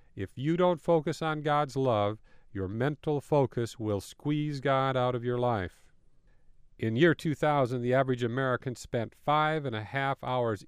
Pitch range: 115-150 Hz